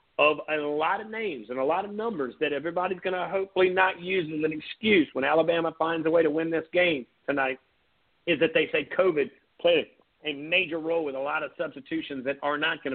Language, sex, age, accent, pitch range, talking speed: English, male, 50-69, American, 145-170 Hz, 220 wpm